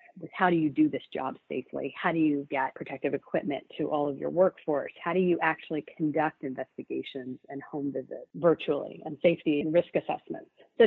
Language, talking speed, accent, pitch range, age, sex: English, 190 wpm, American, 155-190 Hz, 40-59, female